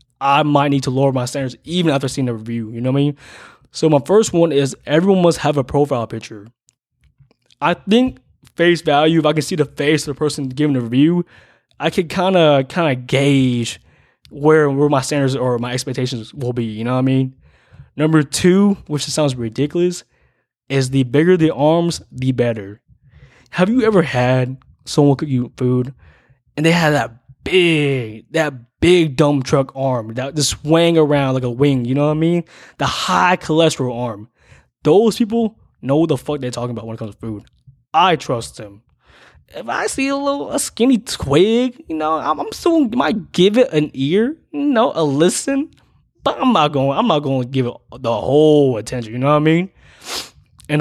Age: 20-39